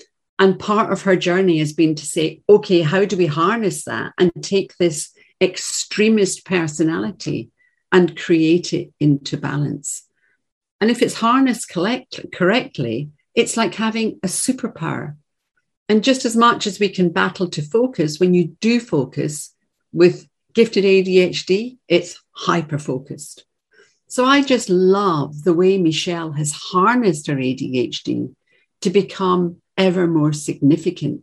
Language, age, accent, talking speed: English, 50-69, British, 135 wpm